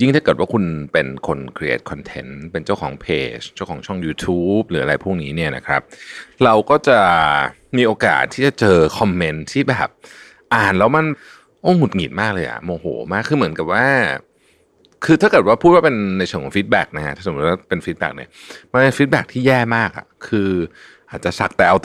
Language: Thai